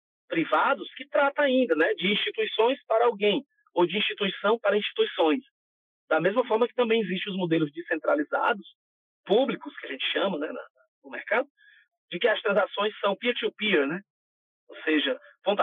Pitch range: 165-280 Hz